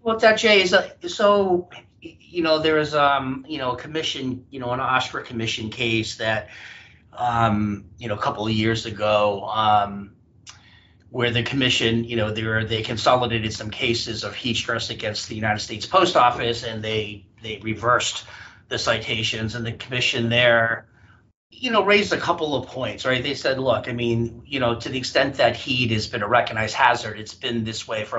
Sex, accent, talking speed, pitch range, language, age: male, American, 195 wpm, 110-130 Hz, English, 40-59